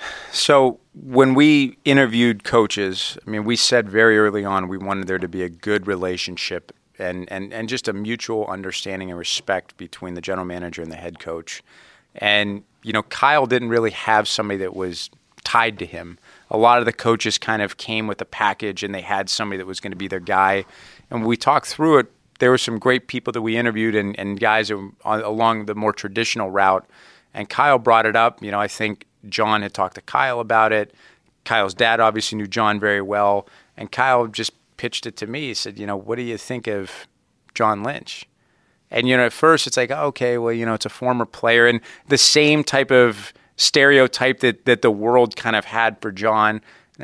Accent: American